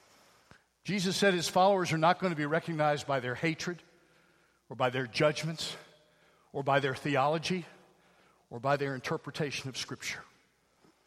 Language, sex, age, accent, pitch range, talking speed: English, male, 50-69, American, 145-205 Hz, 145 wpm